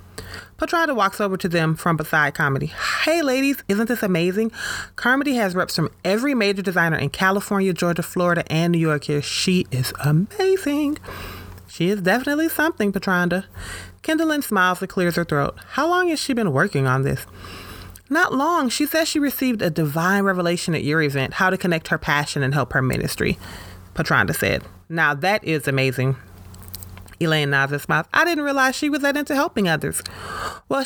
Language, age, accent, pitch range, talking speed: English, 30-49, American, 140-210 Hz, 175 wpm